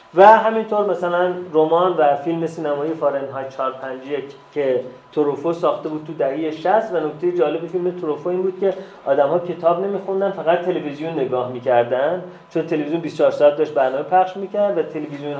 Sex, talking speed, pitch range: male, 165 wpm, 125-170 Hz